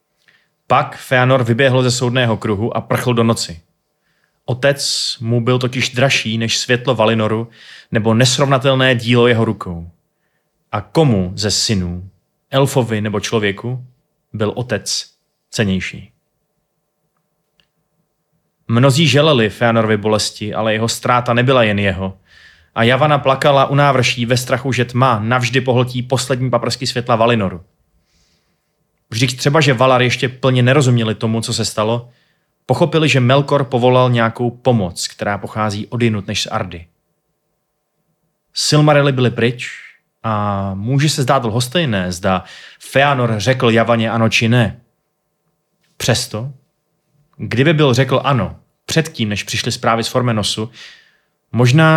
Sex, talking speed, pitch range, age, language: male, 125 wpm, 110-145 Hz, 30-49, Czech